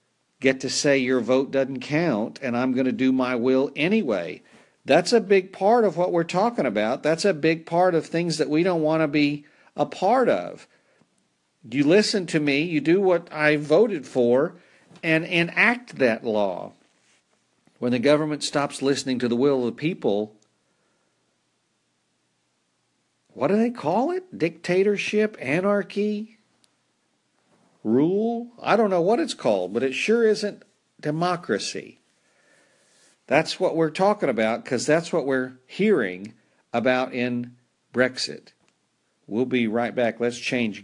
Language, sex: English, male